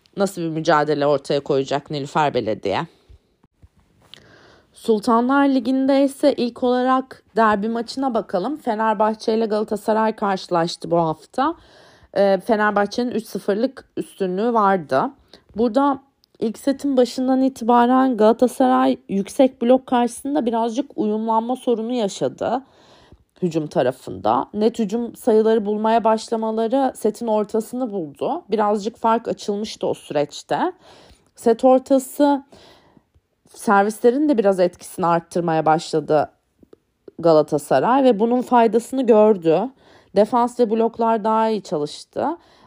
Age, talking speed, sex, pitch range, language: 30-49, 100 wpm, female, 200-255 Hz, Turkish